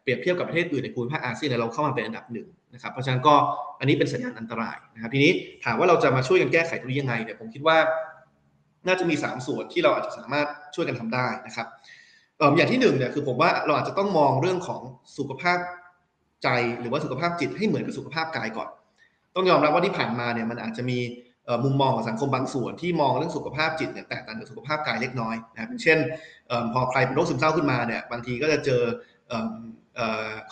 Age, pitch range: 20-39, 120-160 Hz